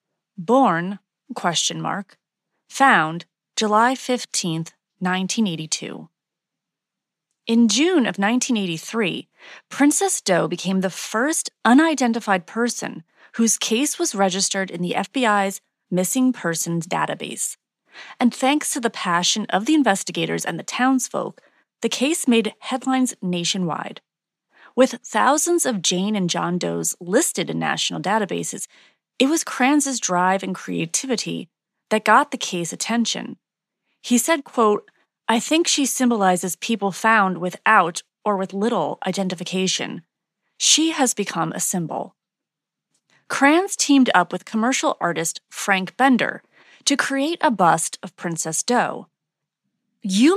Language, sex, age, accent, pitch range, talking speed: English, female, 30-49, American, 185-260 Hz, 120 wpm